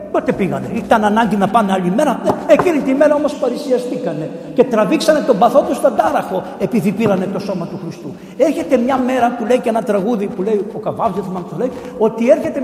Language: Greek